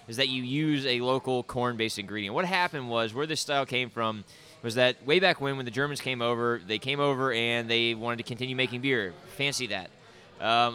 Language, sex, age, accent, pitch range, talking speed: English, male, 20-39, American, 115-145 Hz, 220 wpm